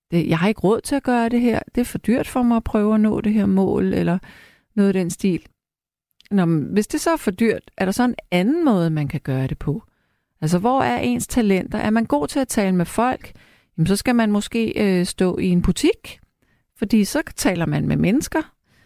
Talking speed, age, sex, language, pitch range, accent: 235 wpm, 30-49, female, Danish, 175-235 Hz, native